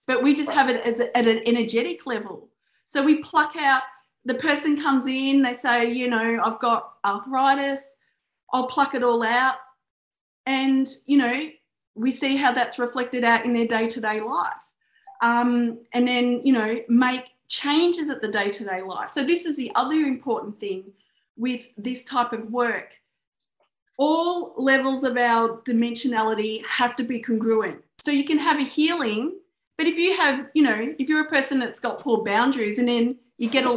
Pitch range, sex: 235-285 Hz, female